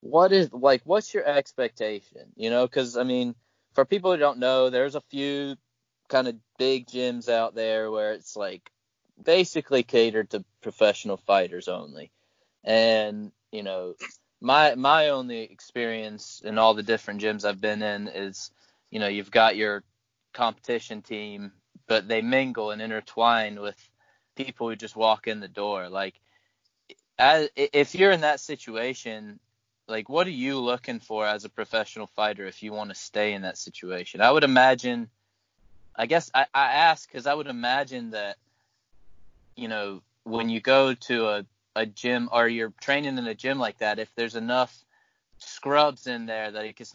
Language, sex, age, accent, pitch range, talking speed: English, male, 20-39, American, 105-130 Hz, 170 wpm